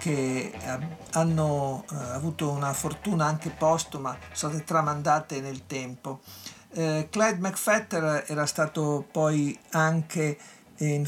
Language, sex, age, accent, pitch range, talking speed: Italian, male, 50-69, native, 145-175 Hz, 125 wpm